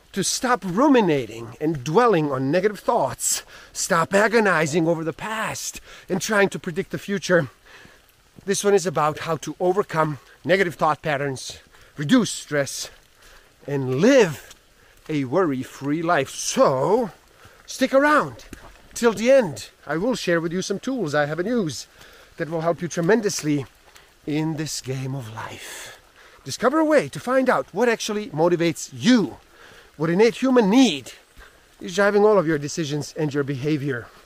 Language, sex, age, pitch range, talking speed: English, male, 30-49, 145-200 Hz, 150 wpm